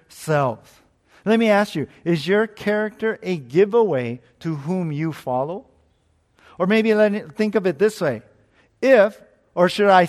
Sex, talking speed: male, 155 wpm